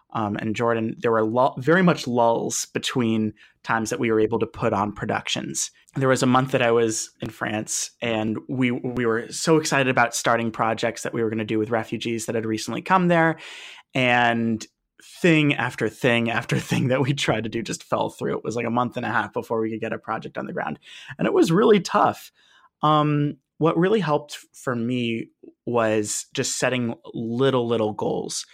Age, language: 30-49, English